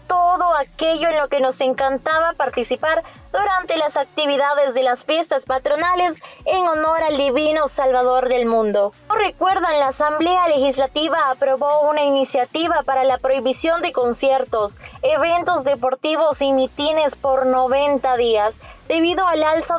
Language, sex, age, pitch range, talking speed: Spanish, female, 20-39, 265-335 Hz, 135 wpm